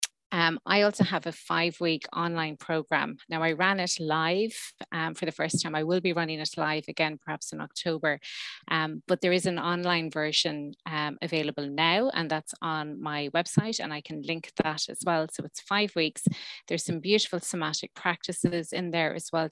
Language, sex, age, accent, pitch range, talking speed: English, female, 30-49, Irish, 165-180 Hz, 195 wpm